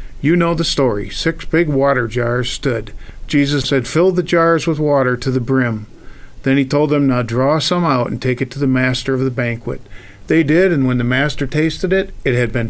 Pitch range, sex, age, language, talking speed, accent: 125-150 Hz, male, 50-69, English, 220 wpm, American